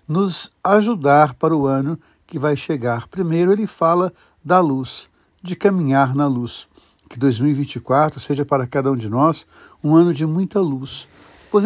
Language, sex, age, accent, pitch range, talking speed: Portuguese, male, 60-79, Brazilian, 135-175 Hz, 160 wpm